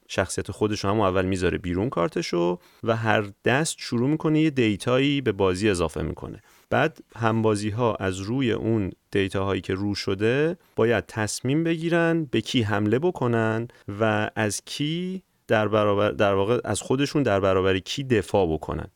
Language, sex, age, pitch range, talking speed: Persian, male, 30-49, 95-125 Hz, 155 wpm